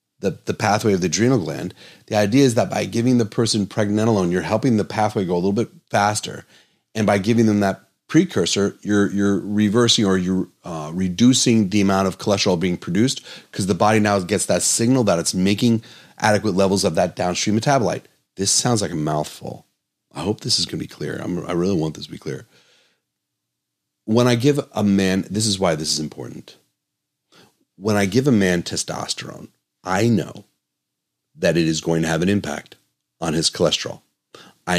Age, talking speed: 30-49, 190 wpm